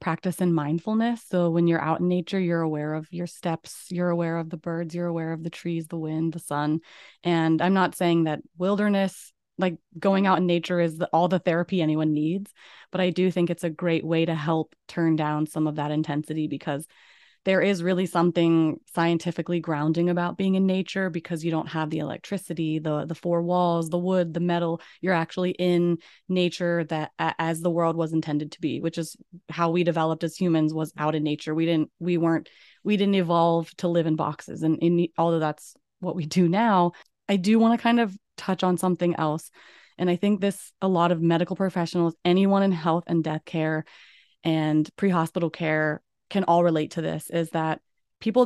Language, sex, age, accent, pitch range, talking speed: English, female, 20-39, American, 160-185 Hz, 205 wpm